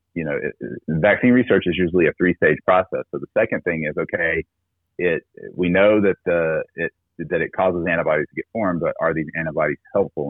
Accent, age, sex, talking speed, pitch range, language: American, 30-49, male, 200 wpm, 80-90 Hz, English